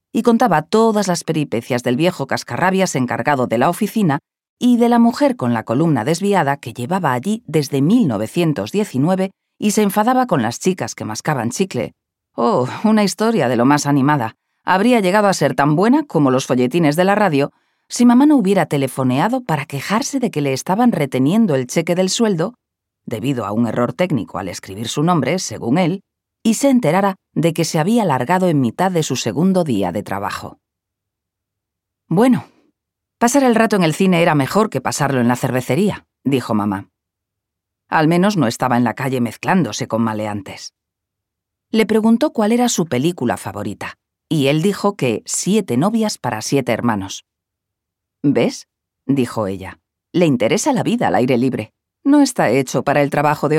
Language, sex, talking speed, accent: Spanish, female, 175 wpm, Spanish